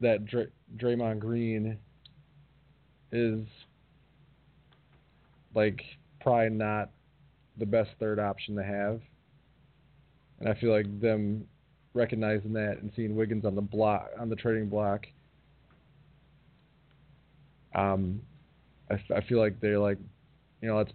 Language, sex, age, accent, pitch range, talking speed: English, male, 20-39, American, 105-145 Hz, 120 wpm